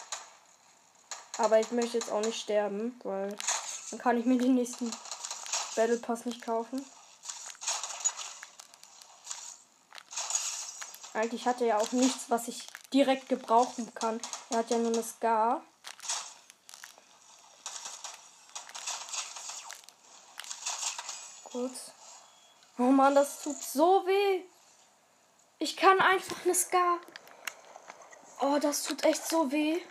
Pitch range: 235-310 Hz